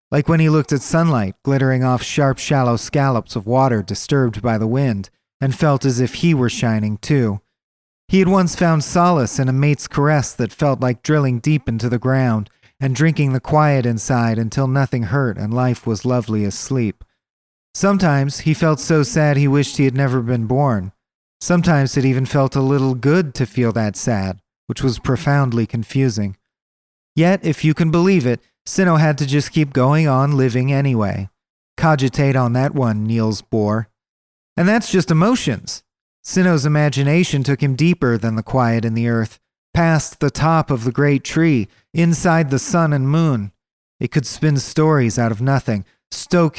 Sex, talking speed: male, 180 wpm